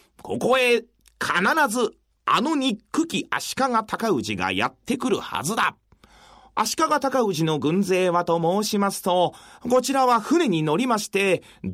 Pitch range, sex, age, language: 185-265 Hz, male, 40-59, Japanese